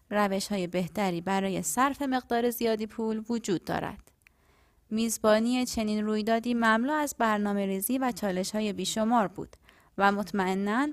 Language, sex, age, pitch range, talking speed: Persian, female, 20-39, 200-255 Hz, 125 wpm